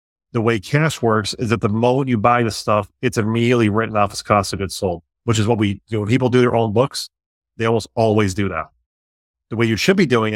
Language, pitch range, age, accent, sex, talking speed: English, 100-125 Hz, 30-49, American, male, 250 wpm